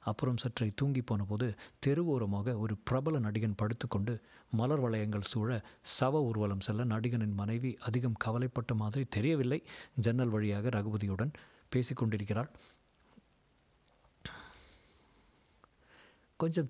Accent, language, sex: native, Tamil, male